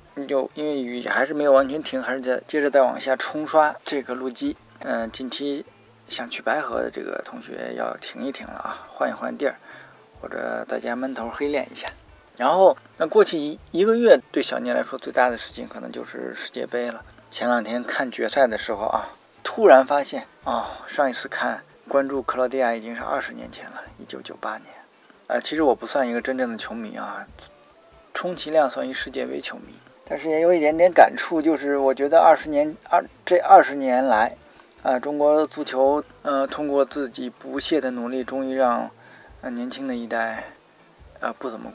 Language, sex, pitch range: Chinese, male, 125-155 Hz